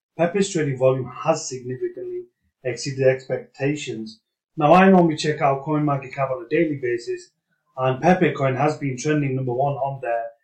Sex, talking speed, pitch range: male, 155 wpm, 130-165 Hz